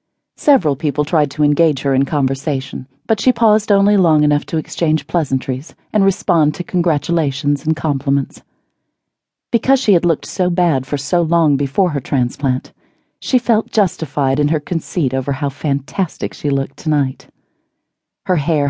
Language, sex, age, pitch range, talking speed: English, female, 40-59, 140-175 Hz, 155 wpm